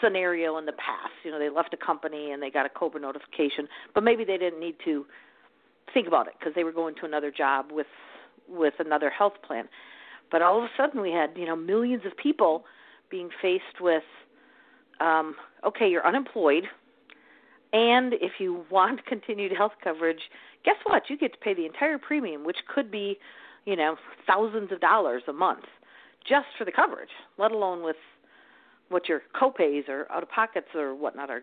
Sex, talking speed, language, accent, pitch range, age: female, 190 wpm, English, American, 155-220 Hz, 50-69